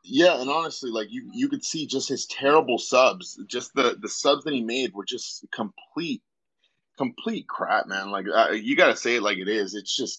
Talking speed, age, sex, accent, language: 220 wpm, 20-39, male, American, English